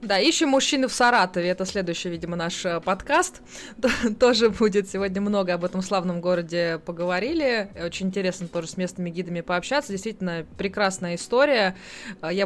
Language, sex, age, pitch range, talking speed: Russian, female, 20-39, 170-215 Hz, 145 wpm